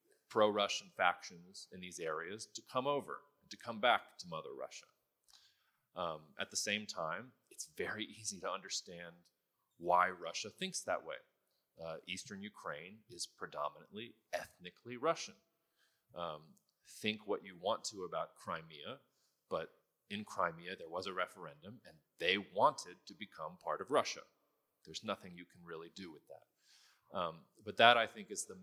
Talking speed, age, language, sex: 155 wpm, 30-49, Italian, male